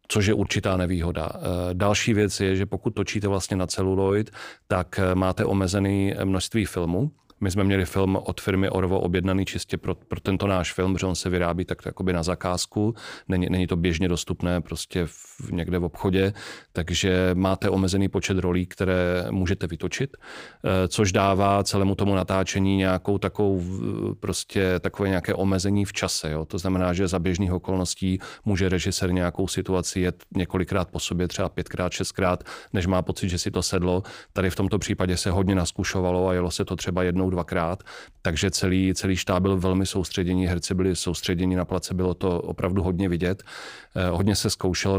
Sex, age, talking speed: male, 40-59, 175 wpm